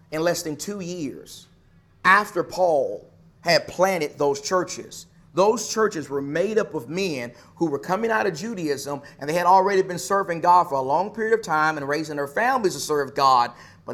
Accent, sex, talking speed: American, male, 195 wpm